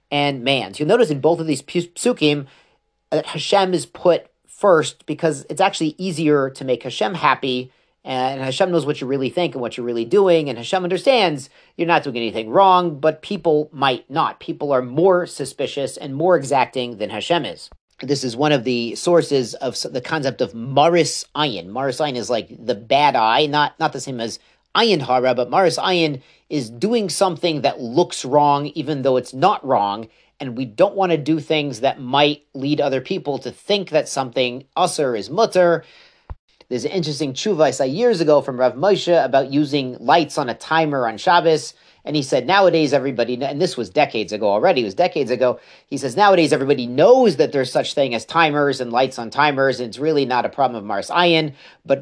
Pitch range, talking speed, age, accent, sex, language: 130-165 Hz, 200 wpm, 40-59, American, male, English